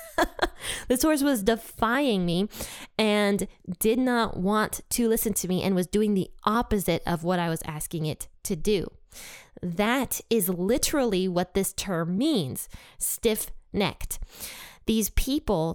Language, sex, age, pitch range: English, female, 20-39, 175-225 Hz